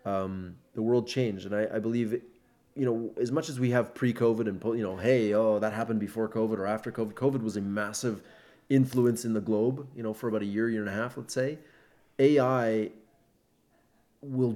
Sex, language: male, English